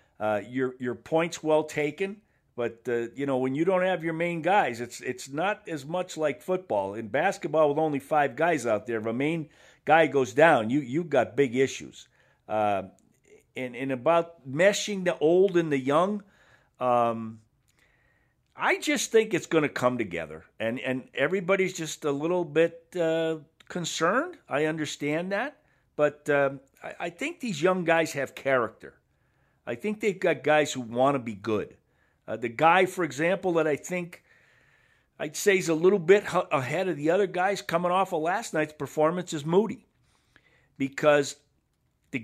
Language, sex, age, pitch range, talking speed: English, male, 50-69, 135-175 Hz, 175 wpm